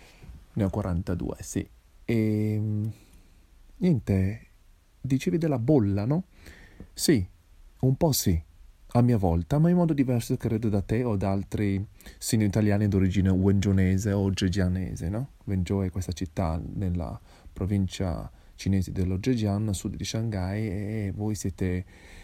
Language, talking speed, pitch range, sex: Italian, 130 wpm, 95-115 Hz, male